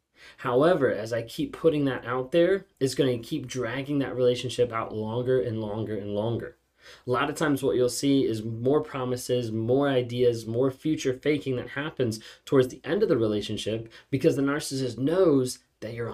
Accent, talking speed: American, 185 wpm